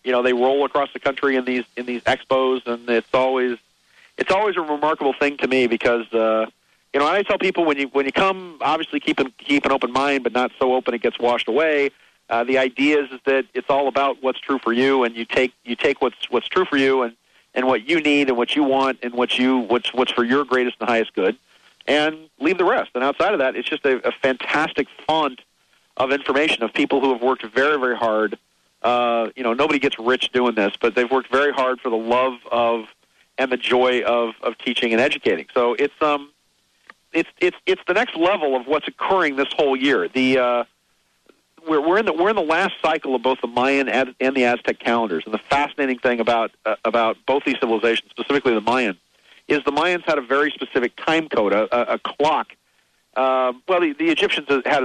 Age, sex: 40-59, male